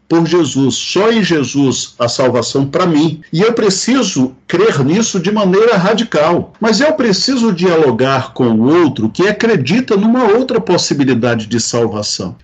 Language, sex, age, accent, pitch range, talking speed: Portuguese, male, 50-69, Brazilian, 140-200 Hz, 150 wpm